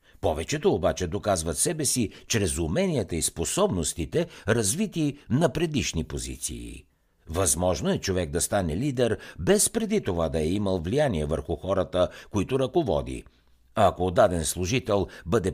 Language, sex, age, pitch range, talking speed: Bulgarian, male, 60-79, 80-125 Hz, 130 wpm